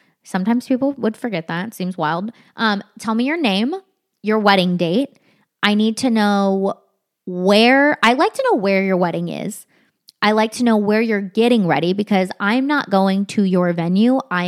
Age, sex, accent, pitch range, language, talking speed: 20-39, female, American, 180-225 Hz, English, 180 wpm